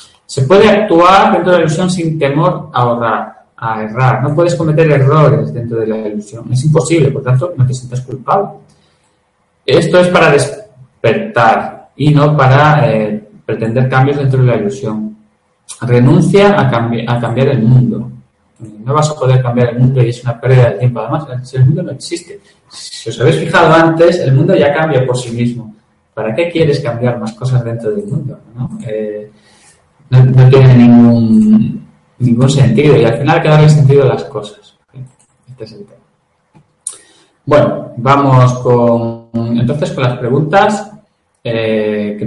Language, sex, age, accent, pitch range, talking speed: Spanish, male, 30-49, Spanish, 115-150 Hz, 160 wpm